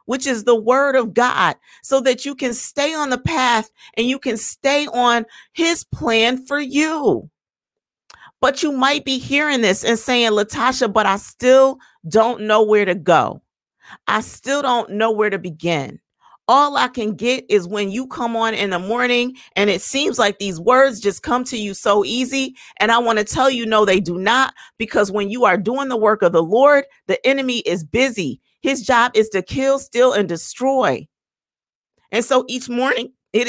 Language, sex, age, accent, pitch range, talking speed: English, female, 40-59, American, 215-265 Hz, 195 wpm